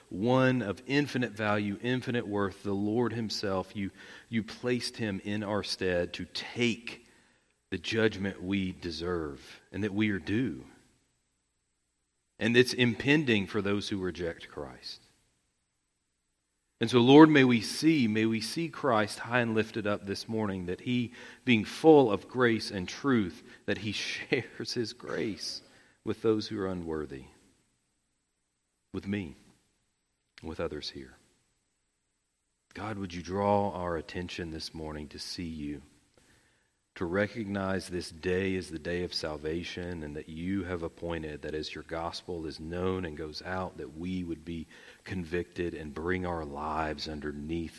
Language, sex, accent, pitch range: English, male, American, 80-110 Hz